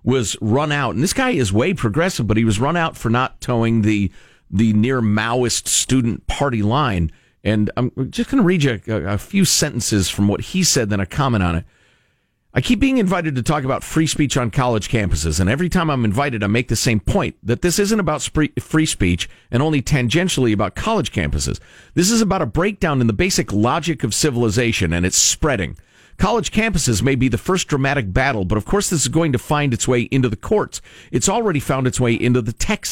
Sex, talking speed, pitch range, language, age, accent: male, 220 wpm, 100-140 Hz, English, 50-69, American